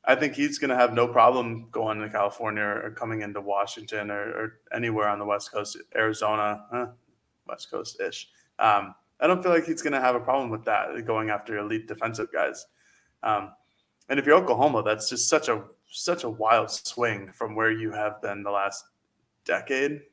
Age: 20-39